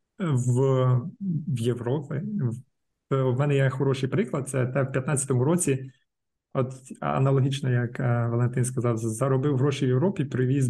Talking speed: 120 wpm